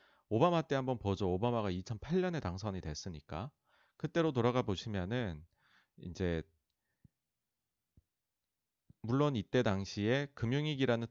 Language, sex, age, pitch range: Korean, male, 30-49, 95-140 Hz